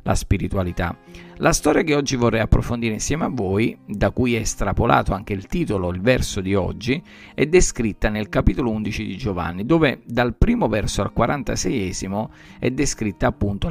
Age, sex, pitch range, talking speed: 50-69, male, 95-115 Hz, 165 wpm